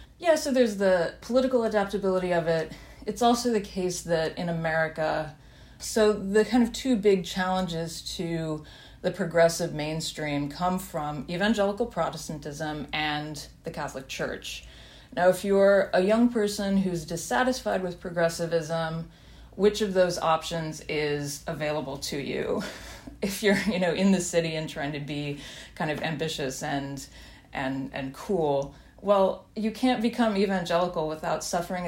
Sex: female